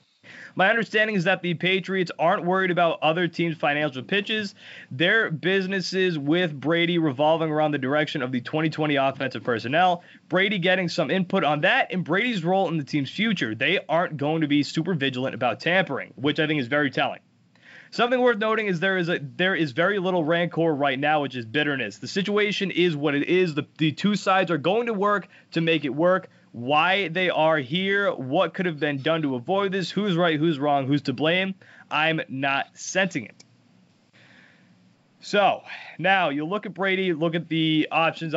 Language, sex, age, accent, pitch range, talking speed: English, male, 20-39, American, 145-190 Hz, 190 wpm